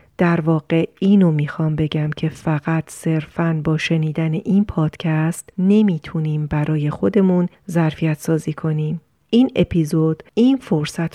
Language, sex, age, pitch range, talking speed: Persian, female, 40-59, 160-195 Hz, 120 wpm